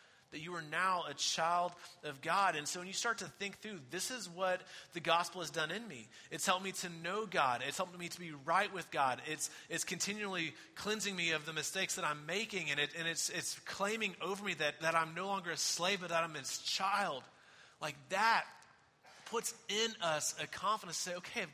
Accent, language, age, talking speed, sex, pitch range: American, English, 30-49, 225 wpm, male, 145-185 Hz